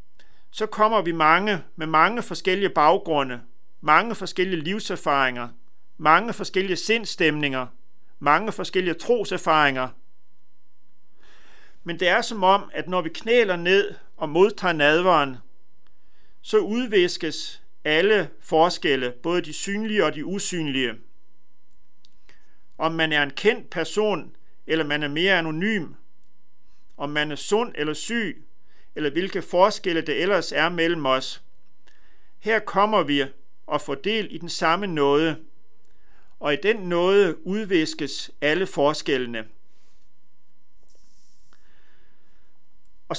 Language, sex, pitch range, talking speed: Danish, male, 155-200 Hz, 115 wpm